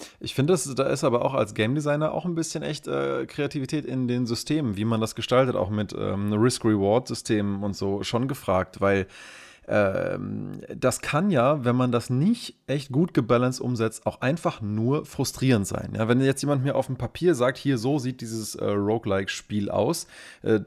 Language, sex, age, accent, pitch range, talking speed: German, male, 30-49, German, 105-135 Hz, 185 wpm